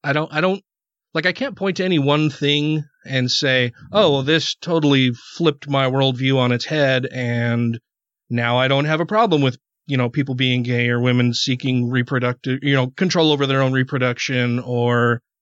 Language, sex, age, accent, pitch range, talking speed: English, male, 30-49, American, 125-145 Hz, 190 wpm